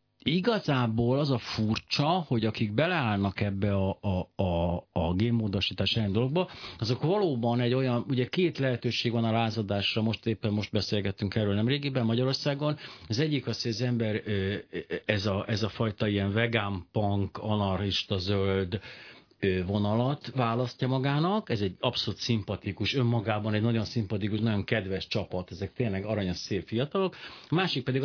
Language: Hungarian